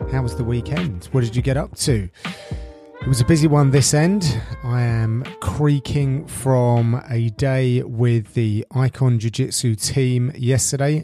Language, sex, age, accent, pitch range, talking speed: English, male, 30-49, British, 115-150 Hz, 165 wpm